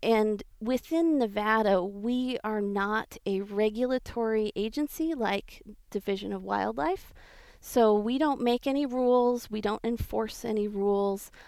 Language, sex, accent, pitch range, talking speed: English, female, American, 200-240 Hz, 125 wpm